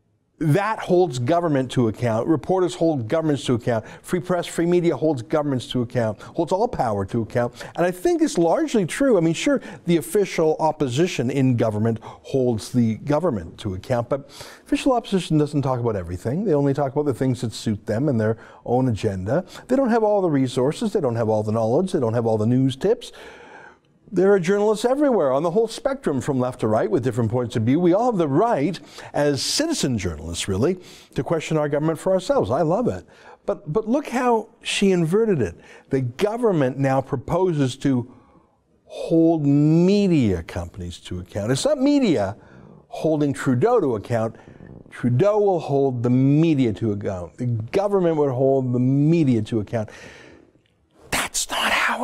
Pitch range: 120-180 Hz